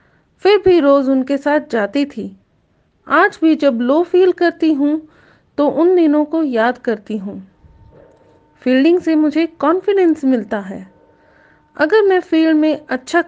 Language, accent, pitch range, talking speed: Hindi, native, 235-310 Hz, 100 wpm